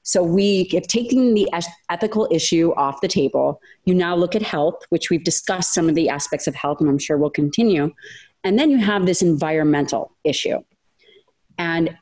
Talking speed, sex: 185 wpm, female